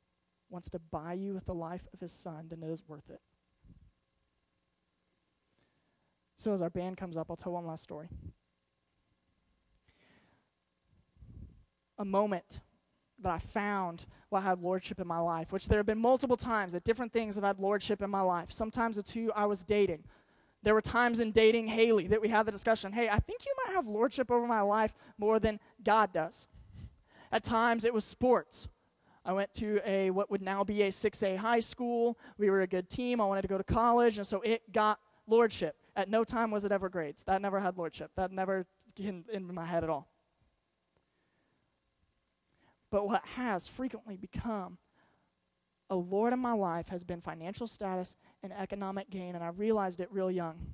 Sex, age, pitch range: male, 20-39, 175-220 Hz